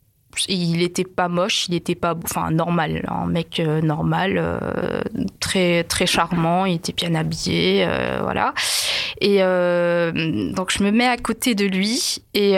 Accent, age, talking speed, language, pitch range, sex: French, 20-39, 165 wpm, French, 175-215 Hz, female